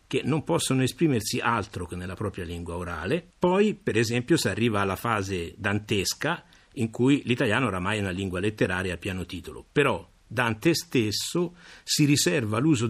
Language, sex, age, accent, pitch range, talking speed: Italian, male, 50-69, native, 95-130 Hz, 165 wpm